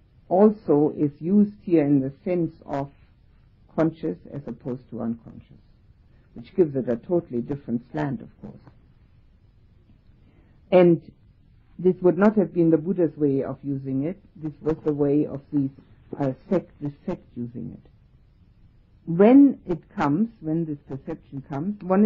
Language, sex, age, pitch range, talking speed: English, female, 60-79, 135-175 Hz, 145 wpm